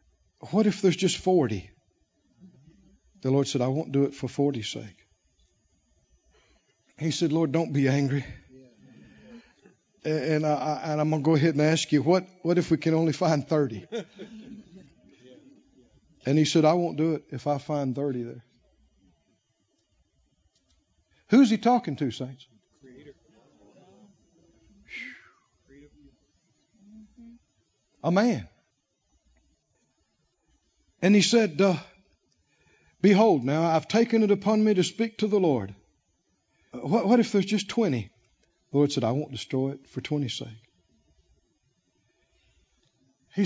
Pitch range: 130-205 Hz